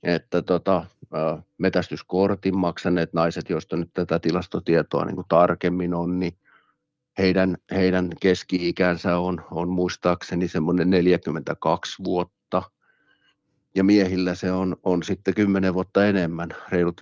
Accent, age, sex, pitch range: native, 50-69, male, 90-100 Hz